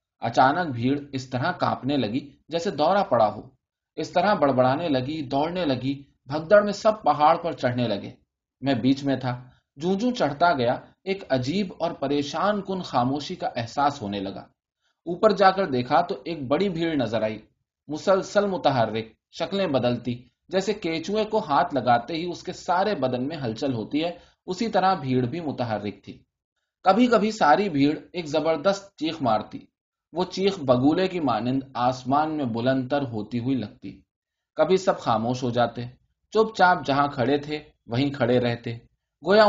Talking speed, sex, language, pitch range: 165 wpm, male, Urdu, 125-180 Hz